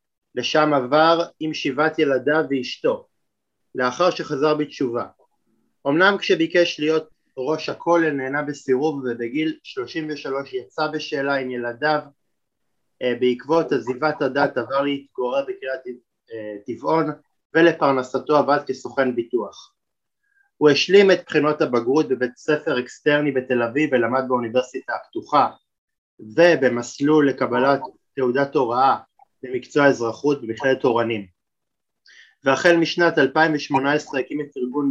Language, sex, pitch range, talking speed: Hebrew, male, 130-160 Hz, 105 wpm